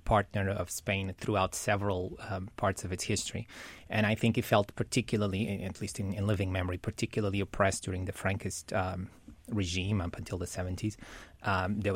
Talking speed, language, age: 175 wpm, English, 30-49